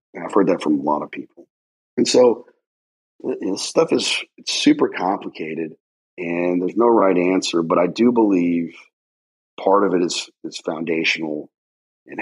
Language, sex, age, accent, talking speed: English, male, 40-59, American, 160 wpm